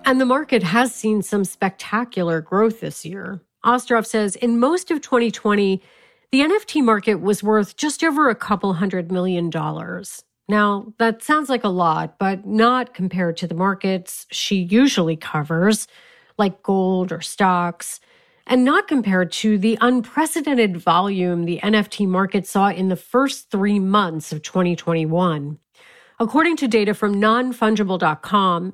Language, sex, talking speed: English, female, 145 wpm